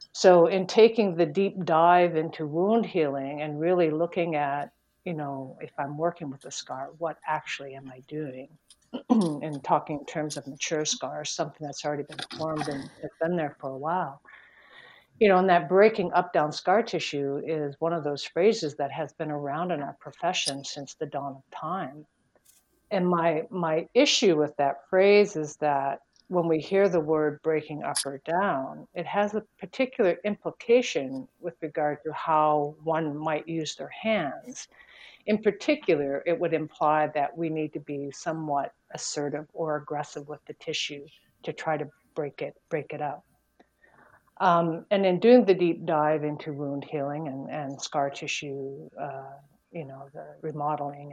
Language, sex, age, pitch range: English, female, 60-79, 145-175 Hz